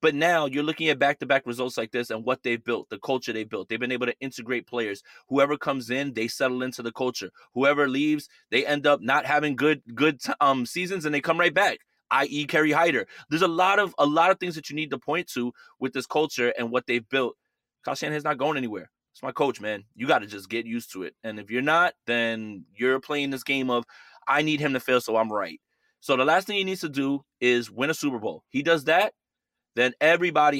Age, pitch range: 20-39, 125-165 Hz